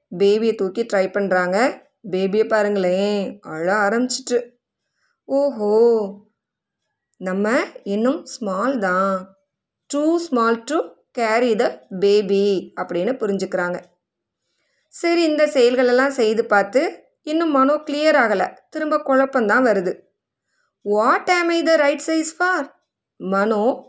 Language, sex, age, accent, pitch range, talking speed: Tamil, female, 20-39, native, 205-290 Hz, 100 wpm